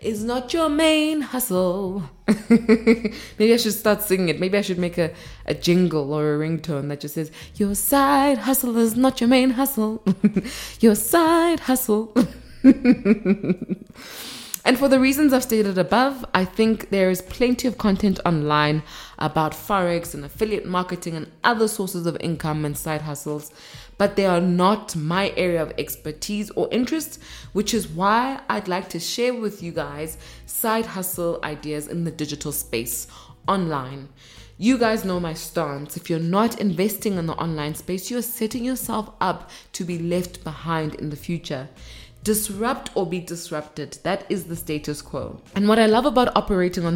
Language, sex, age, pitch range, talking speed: English, female, 20-39, 160-225 Hz, 170 wpm